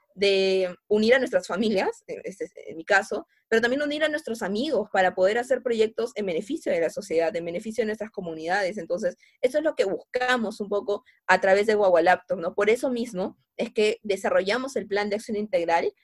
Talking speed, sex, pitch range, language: 200 wpm, female, 190-240 Hz, Spanish